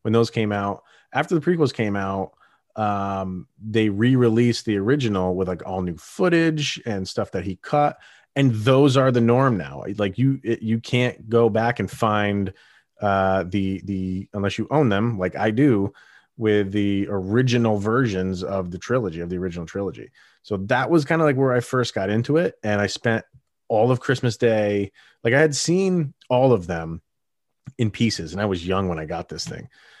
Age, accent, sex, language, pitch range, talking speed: 30-49, American, male, English, 95-125 Hz, 195 wpm